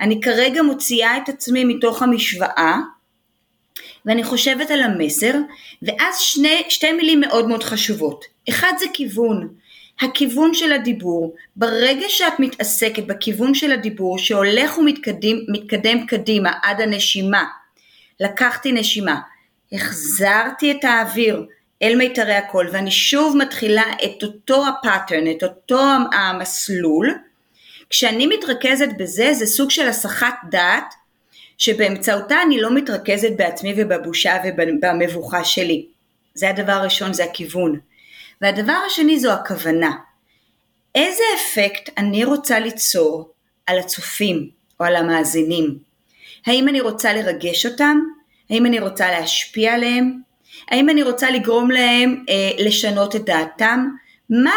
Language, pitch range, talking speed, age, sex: Hebrew, 190-265 Hz, 120 wpm, 30-49, female